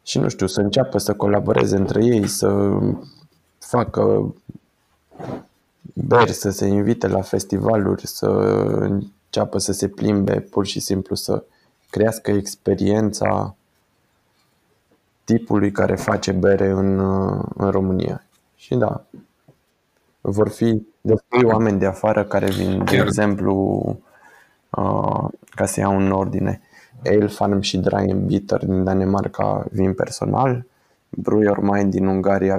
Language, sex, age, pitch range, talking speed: Romanian, male, 20-39, 95-105 Hz, 115 wpm